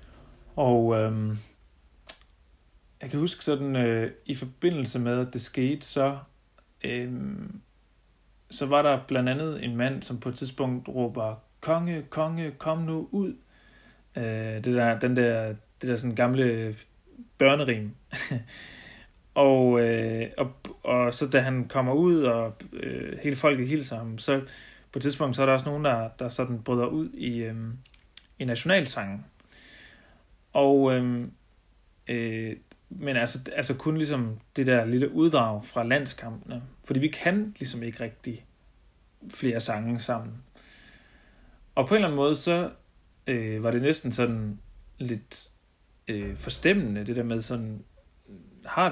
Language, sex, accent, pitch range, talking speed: Danish, male, native, 110-140 Hz, 145 wpm